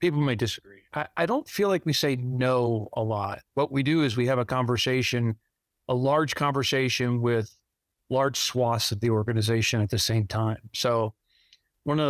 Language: English